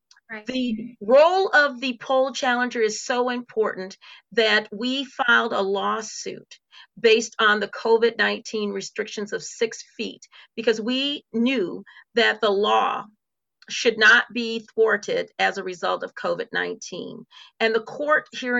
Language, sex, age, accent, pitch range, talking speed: English, female, 40-59, American, 215-260 Hz, 130 wpm